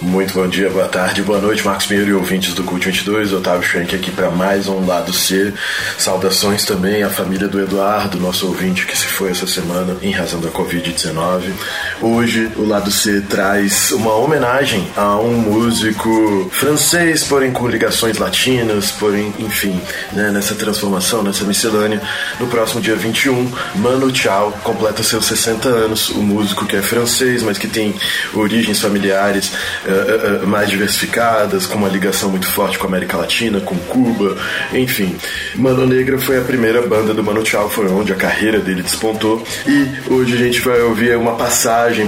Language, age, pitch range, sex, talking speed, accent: English, 20-39, 100-120 Hz, male, 170 wpm, Brazilian